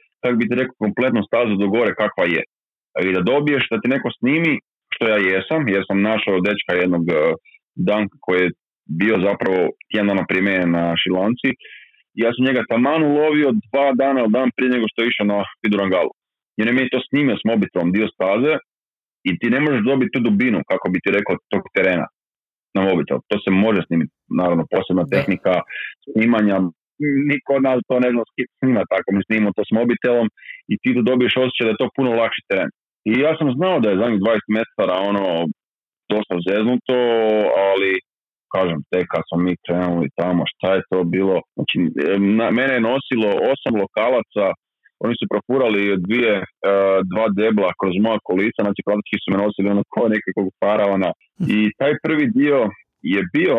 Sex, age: male, 30-49